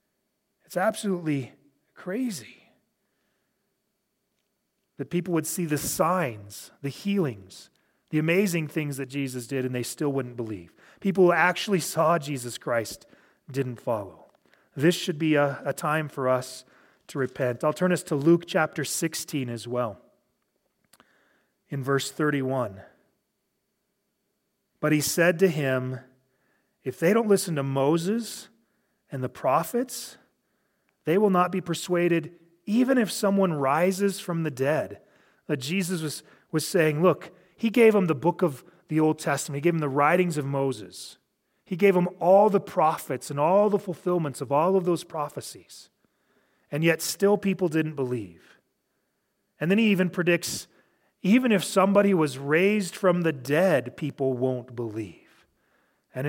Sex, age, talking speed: male, 30-49, 145 wpm